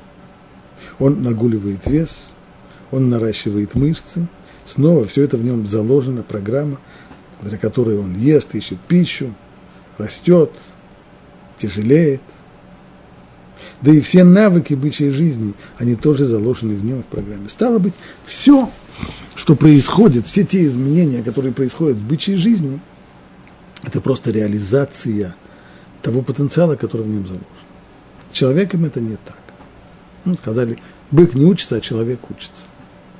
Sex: male